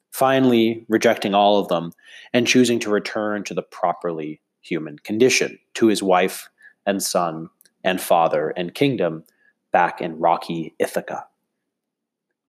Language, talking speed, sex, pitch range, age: English, 130 wpm, male, 85-115 Hz, 30-49